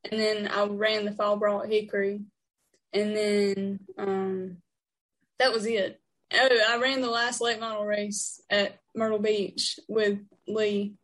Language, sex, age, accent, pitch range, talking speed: English, female, 10-29, American, 200-225 Hz, 145 wpm